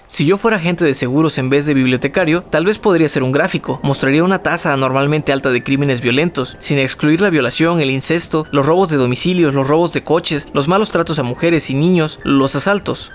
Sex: male